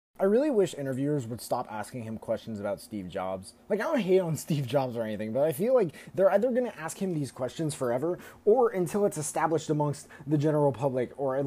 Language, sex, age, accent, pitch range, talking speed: English, male, 20-39, American, 125-185 Hz, 230 wpm